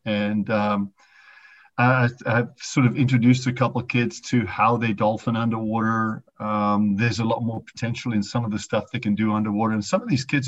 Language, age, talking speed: English, 50-69, 200 wpm